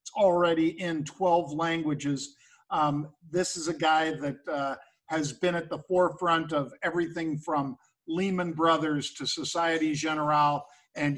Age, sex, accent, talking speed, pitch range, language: 50-69, male, American, 140 wpm, 150-180 Hz, English